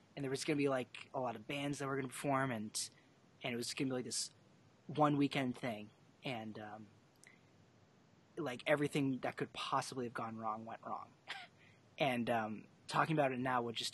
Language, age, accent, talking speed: English, 30-49, American, 210 wpm